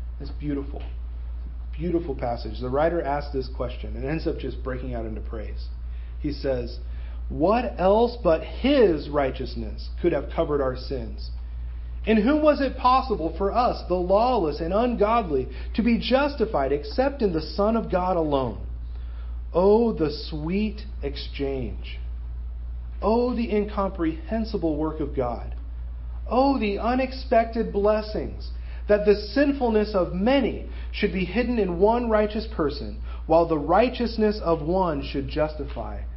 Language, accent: English, American